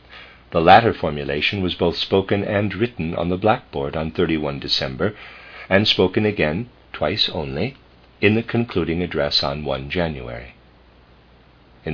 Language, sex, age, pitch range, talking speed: English, male, 50-69, 65-100 Hz, 135 wpm